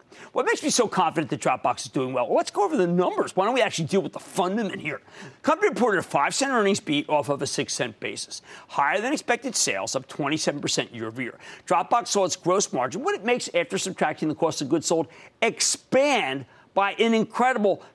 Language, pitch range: English, 155-235 Hz